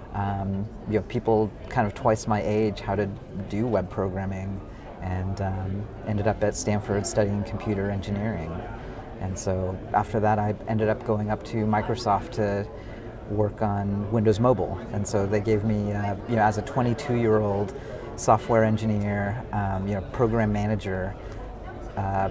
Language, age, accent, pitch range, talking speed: English, 30-49, American, 100-115 Hz, 155 wpm